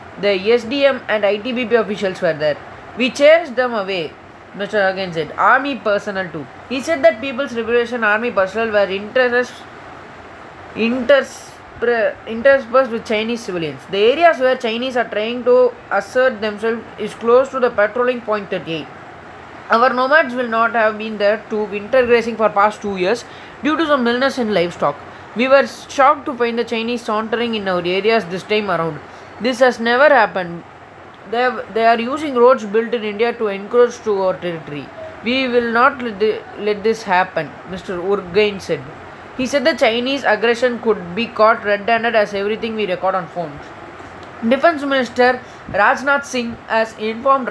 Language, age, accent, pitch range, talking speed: Tamil, 20-39, native, 205-255 Hz, 170 wpm